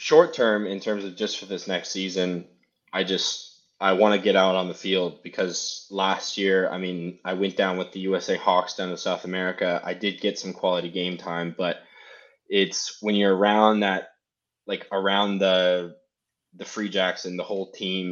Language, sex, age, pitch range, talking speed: English, male, 20-39, 90-100 Hz, 195 wpm